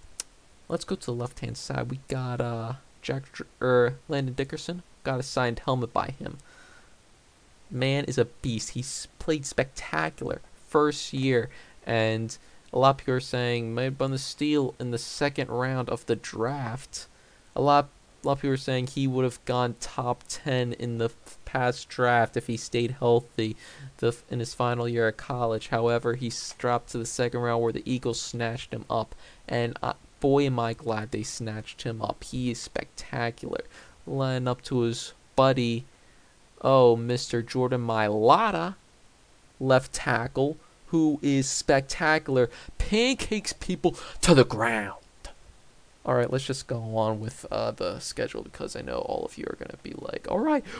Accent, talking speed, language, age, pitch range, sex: American, 170 wpm, English, 20-39, 120-140 Hz, male